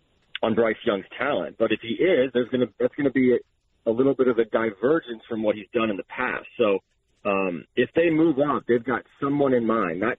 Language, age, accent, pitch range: English, 30-49, American, 110-130 Hz